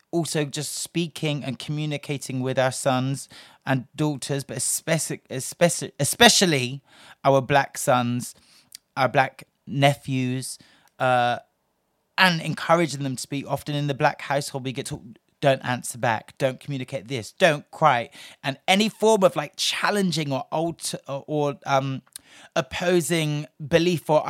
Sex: male